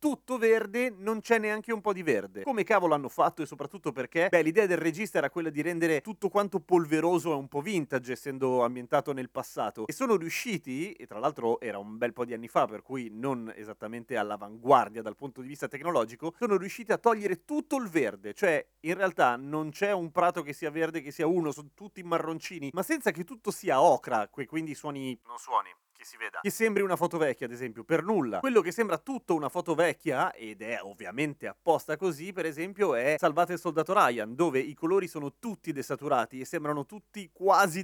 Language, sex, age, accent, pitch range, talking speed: Italian, male, 30-49, native, 125-190 Hz, 210 wpm